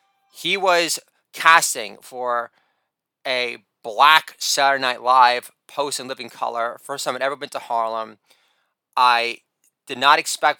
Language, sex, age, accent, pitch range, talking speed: English, male, 30-49, American, 120-145 Hz, 135 wpm